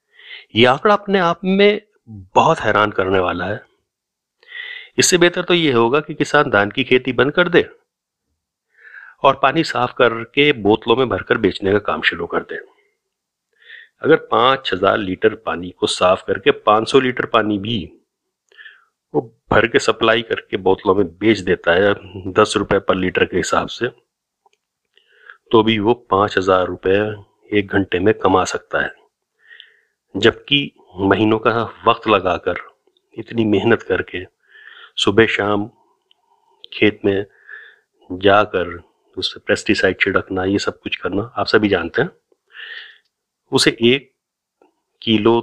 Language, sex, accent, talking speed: Hindi, male, native, 135 wpm